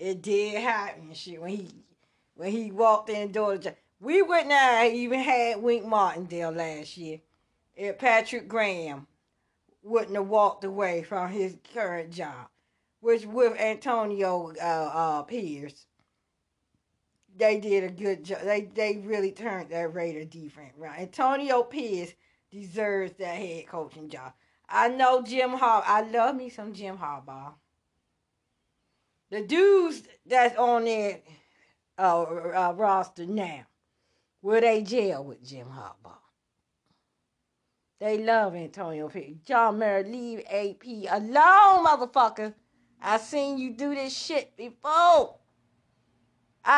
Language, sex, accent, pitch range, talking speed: English, female, American, 170-245 Hz, 135 wpm